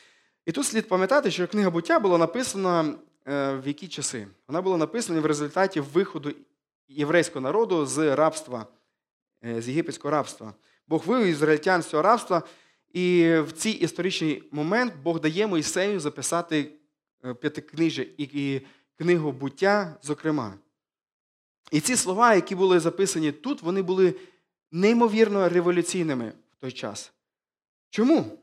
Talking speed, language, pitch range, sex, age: 120 wpm, Ukrainian, 150-190 Hz, male, 20-39